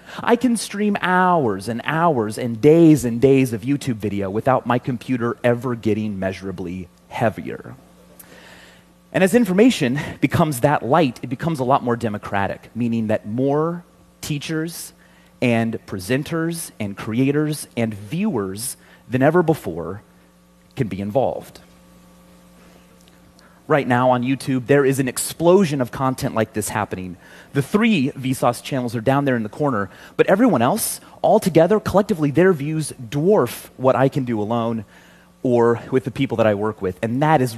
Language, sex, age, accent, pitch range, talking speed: English, male, 30-49, American, 105-150 Hz, 155 wpm